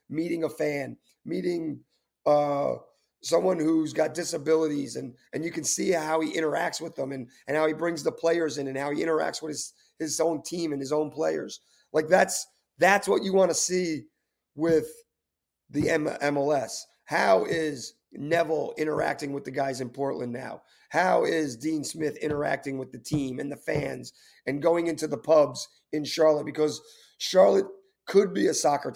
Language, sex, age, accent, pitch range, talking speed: English, male, 30-49, American, 145-175 Hz, 180 wpm